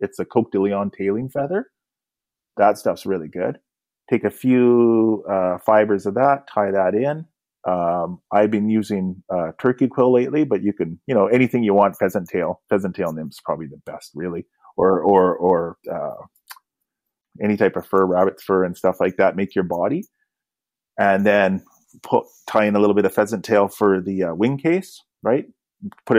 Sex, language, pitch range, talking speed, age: male, English, 95-120 Hz, 185 wpm, 30-49